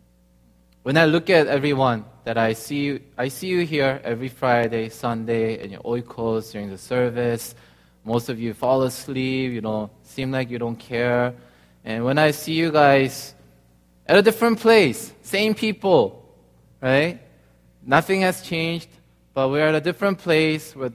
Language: Korean